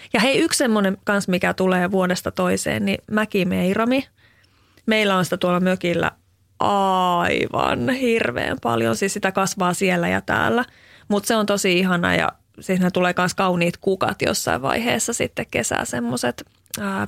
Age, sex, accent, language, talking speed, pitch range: 30-49, female, native, Finnish, 150 wpm, 165-210 Hz